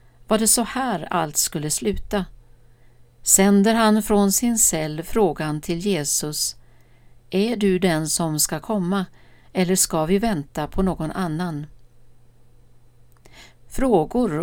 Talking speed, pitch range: 120 wpm, 145-205 Hz